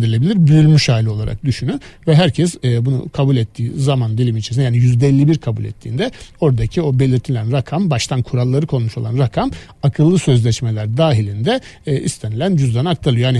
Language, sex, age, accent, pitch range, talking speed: Turkish, male, 60-79, native, 120-145 Hz, 160 wpm